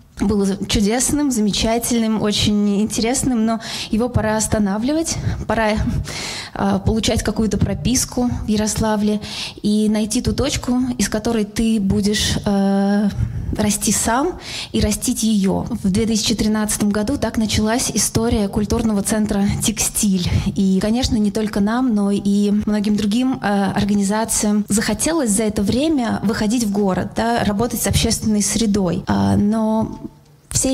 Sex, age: female, 20-39